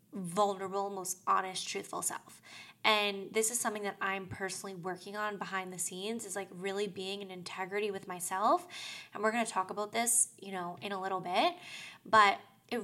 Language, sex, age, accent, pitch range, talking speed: English, female, 10-29, American, 190-220 Hz, 185 wpm